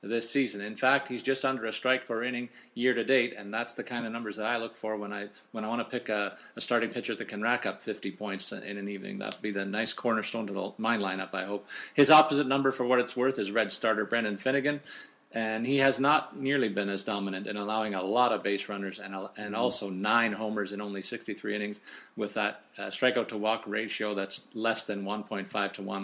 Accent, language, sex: American, English, male